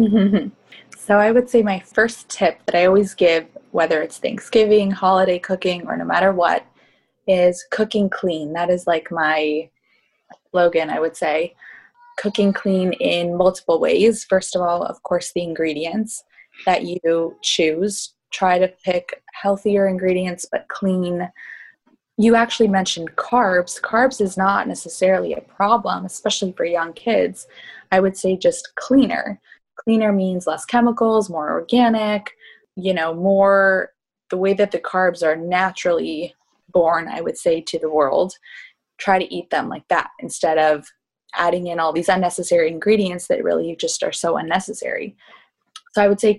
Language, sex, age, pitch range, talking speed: English, female, 20-39, 175-220 Hz, 155 wpm